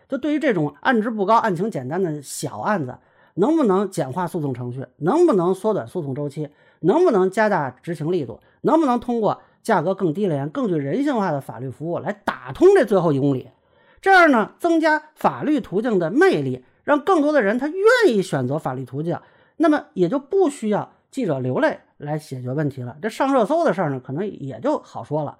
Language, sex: Chinese, male